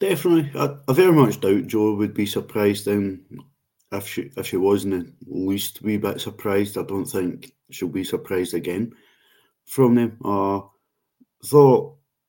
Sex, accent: male, British